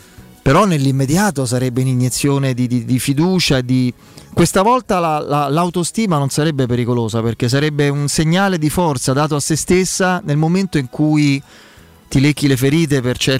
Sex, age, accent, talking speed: male, 30-49, native, 155 wpm